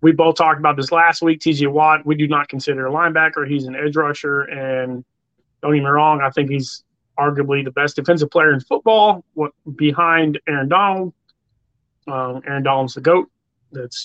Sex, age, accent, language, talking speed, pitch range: male, 30-49, American, English, 190 wpm, 140-175 Hz